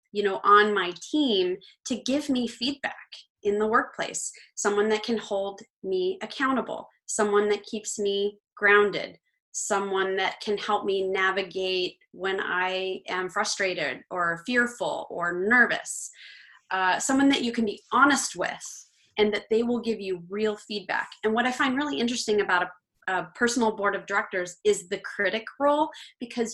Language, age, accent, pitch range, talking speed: English, 30-49, American, 200-260 Hz, 160 wpm